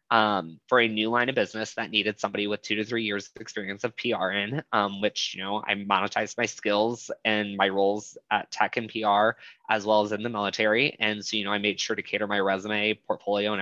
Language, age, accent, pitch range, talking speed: English, 20-39, American, 100-120 Hz, 240 wpm